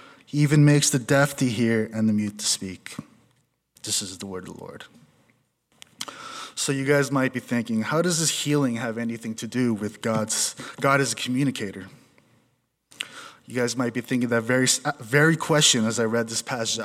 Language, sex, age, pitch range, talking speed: English, male, 20-39, 110-145 Hz, 190 wpm